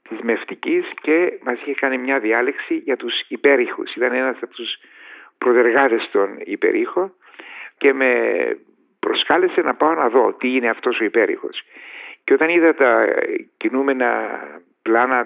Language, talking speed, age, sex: Greek, 135 wpm, 50-69, male